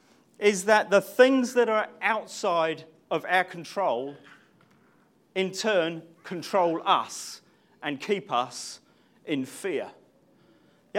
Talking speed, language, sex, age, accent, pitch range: 110 wpm, English, male, 40-59, British, 180-265 Hz